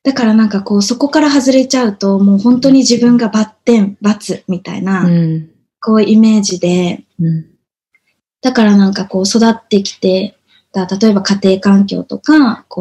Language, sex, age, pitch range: Japanese, female, 20-39, 195-250 Hz